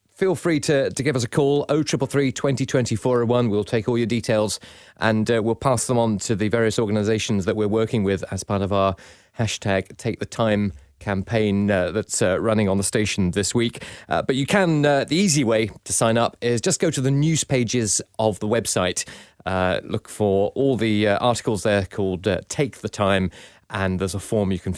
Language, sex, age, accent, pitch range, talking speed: English, male, 30-49, British, 100-130 Hz, 210 wpm